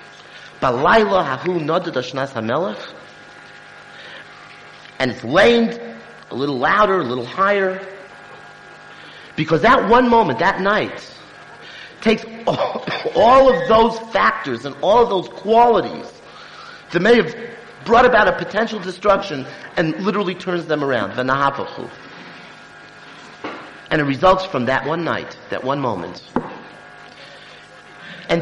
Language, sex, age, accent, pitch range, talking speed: English, male, 50-69, American, 125-195 Hz, 105 wpm